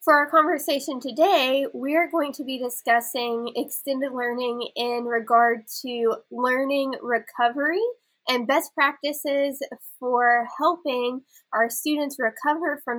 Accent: American